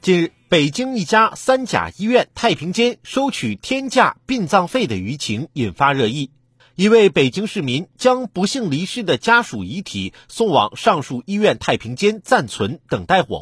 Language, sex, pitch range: Chinese, male, 150-240 Hz